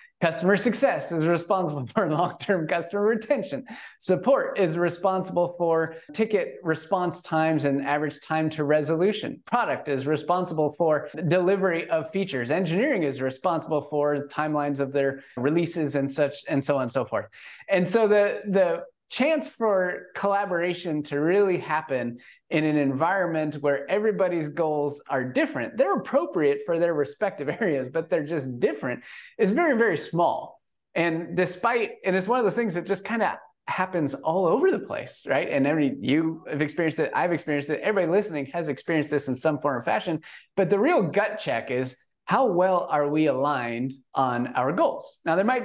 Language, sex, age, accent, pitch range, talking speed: English, male, 30-49, American, 145-190 Hz, 170 wpm